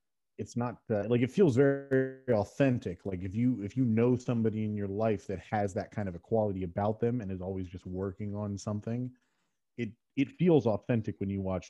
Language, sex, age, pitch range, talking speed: English, male, 30-49, 95-110 Hz, 215 wpm